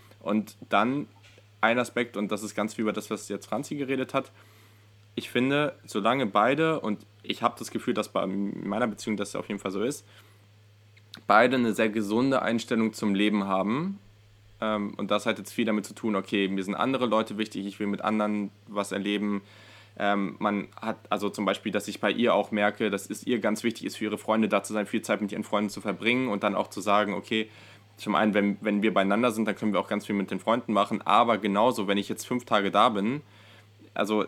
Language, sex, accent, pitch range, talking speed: German, male, German, 100-110 Hz, 220 wpm